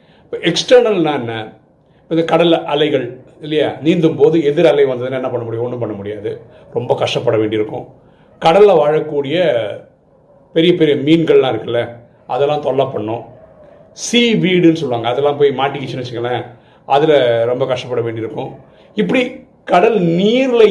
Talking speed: 130 wpm